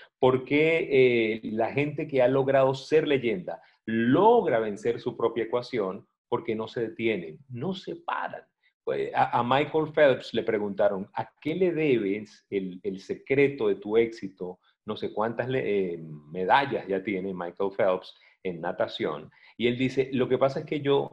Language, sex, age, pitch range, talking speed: Spanish, male, 40-59, 105-140 Hz, 170 wpm